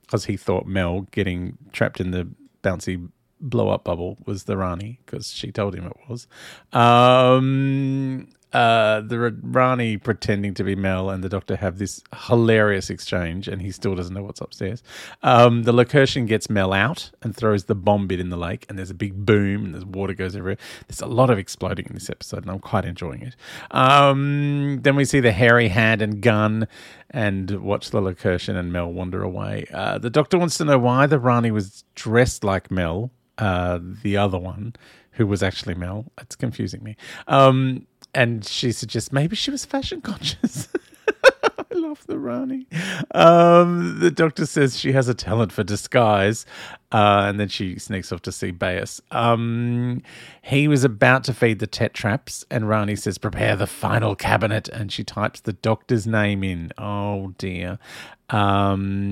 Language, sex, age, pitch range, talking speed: English, male, 30-49, 95-125 Hz, 180 wpm